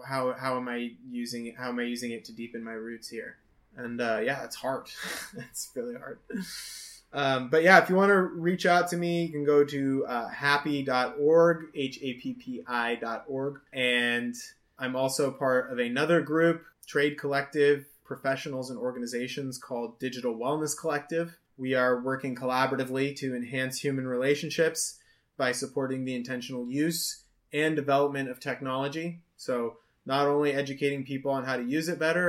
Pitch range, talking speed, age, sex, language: 125-160 Hz, 160 wpm, 20-39, male, English